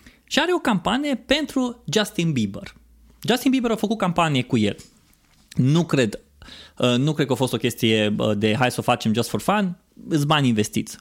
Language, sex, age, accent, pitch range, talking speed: Romanian, male, 20-39, native, 125-195 Hz, 185 wpm